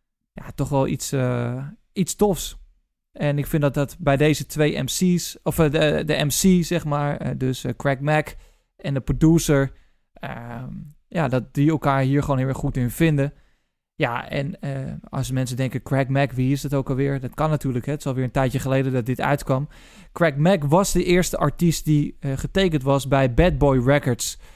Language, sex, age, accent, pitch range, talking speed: Dutch, male, 20-39, Dutch, 130-155 Hz, 195 wpm